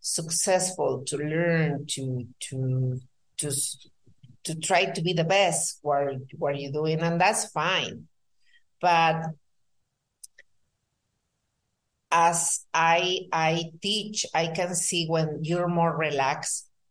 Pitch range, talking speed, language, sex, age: 140-175 Hz, 110 wpm, English, female, 50-69